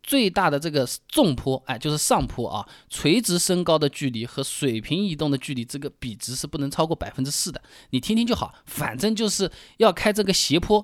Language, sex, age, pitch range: Chinese, male, 20-39, 125-190 Hz